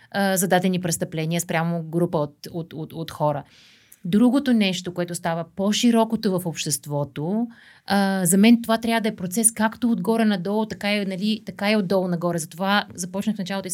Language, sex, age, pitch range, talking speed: Bulgarian, female, 30-49, 165-205 Hz, 170 wpm